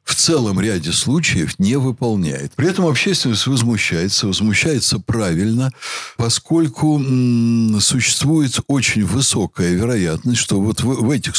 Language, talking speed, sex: Russian, 120 wpm, male